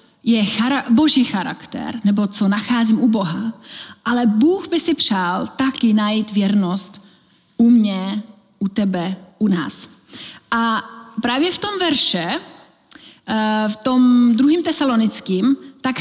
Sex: female